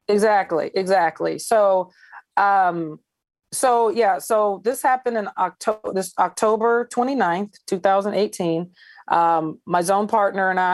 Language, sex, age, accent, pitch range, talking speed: English, female, 30-49, American, 165-200 Hz, 110 wpm